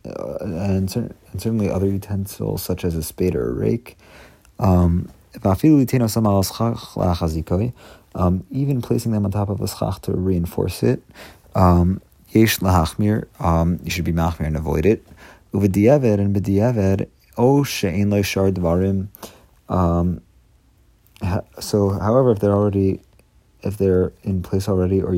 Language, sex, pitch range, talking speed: English, male, 90-105 Hz, 105 wpm